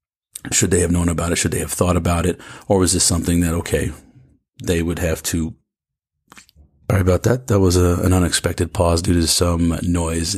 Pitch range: 80-90 Hz